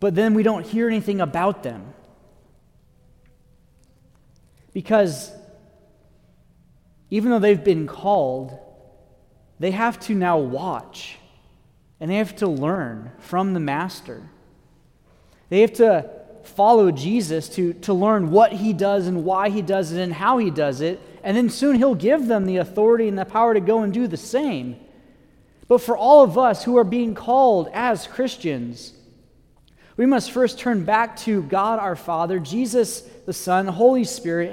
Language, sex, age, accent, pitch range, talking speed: English, male, 30-49, American, 160-220 Hz, 160 wpm